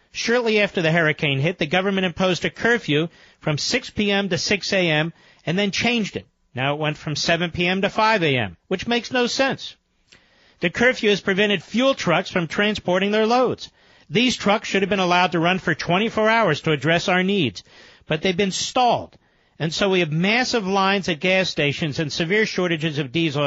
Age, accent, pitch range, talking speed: 50-69, American, 160-215 Hz, 195 wpm